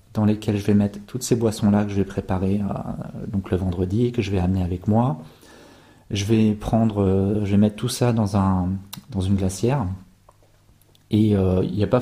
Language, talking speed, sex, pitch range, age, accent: French, 215 wpm, male, 100-120 Hz, 30-49, French